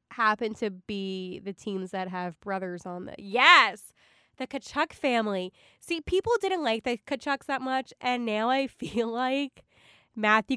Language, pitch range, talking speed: English, 190-245 Hz, 160 wpm